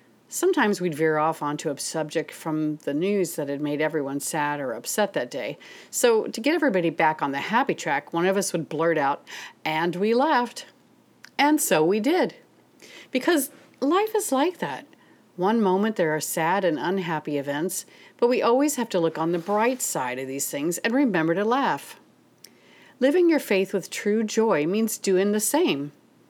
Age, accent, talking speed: 40-59, American, 185 wpm